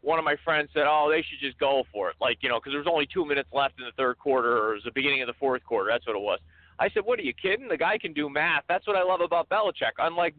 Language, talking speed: English, 330 wpm